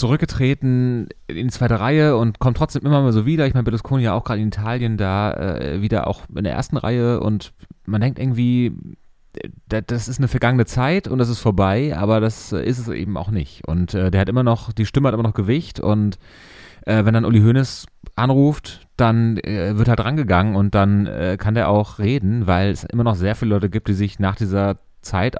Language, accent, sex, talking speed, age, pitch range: German, German, male, 215 wpm, 30-49, 95-120 Hz